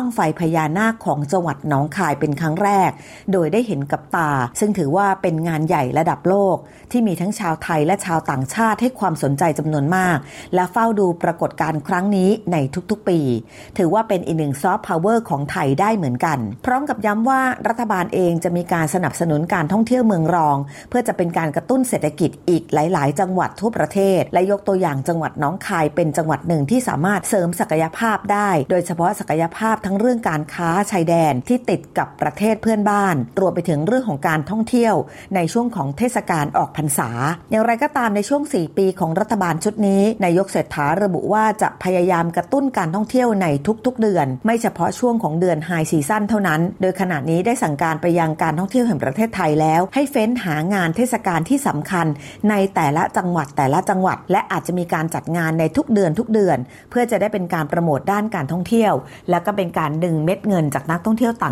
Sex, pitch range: female, 155-205 Hz